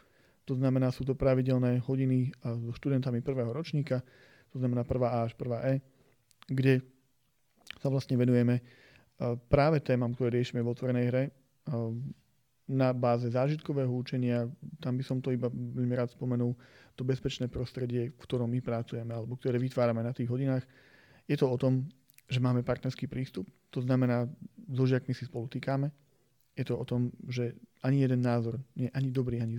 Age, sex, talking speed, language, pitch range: 40-59, male, 165 wpm, Slovak, 120-135 Hz